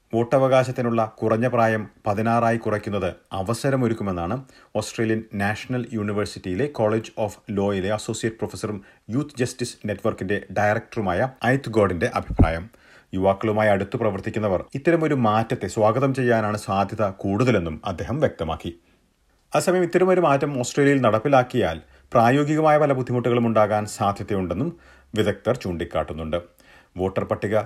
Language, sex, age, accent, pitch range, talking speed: Malayalam, male, 40-59, native, 100-130 Hz, 100 wpm